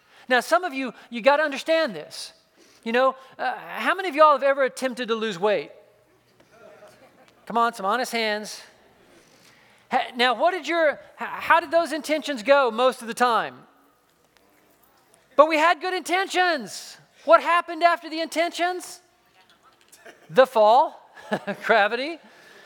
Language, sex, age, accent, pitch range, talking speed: English, male, 40-59, American, 250-305 Hz, 140 wpm